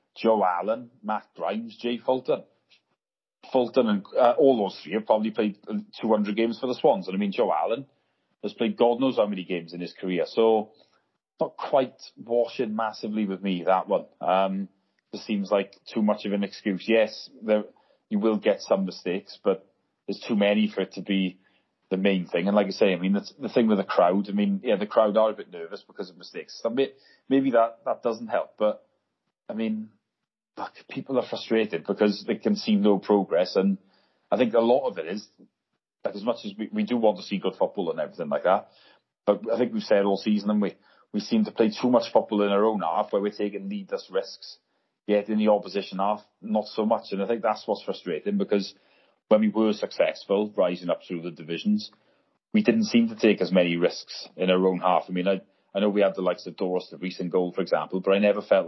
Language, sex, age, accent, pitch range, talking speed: English, male, 30-49, British, 95-110 Hz, 225 wpm